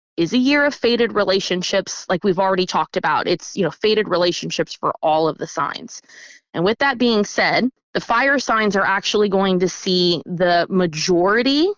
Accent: American